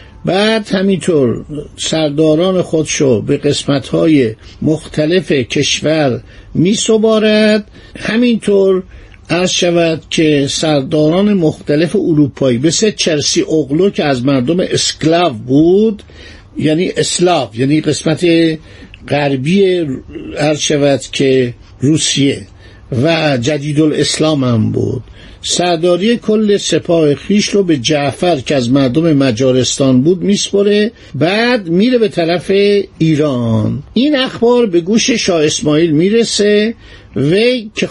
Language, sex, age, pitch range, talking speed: Persian, male, 50-69, 140-195 Hz, 105 wpm